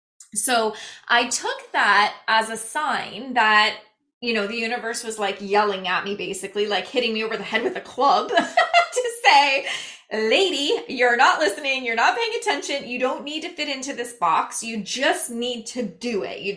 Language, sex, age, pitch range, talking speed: English, female, 20-39, 195-255 Hz, 190 wpm